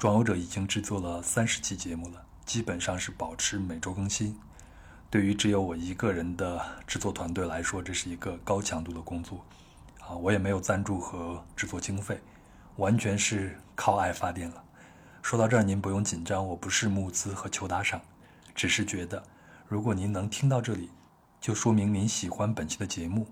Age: 20-39